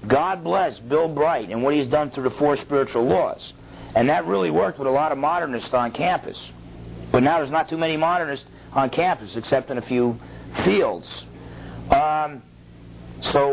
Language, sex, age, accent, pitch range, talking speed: English, male, 50-69, American, 95-140 Hz, 175 wpm